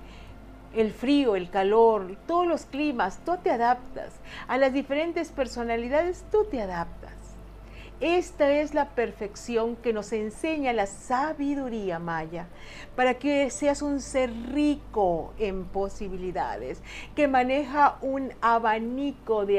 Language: Spanish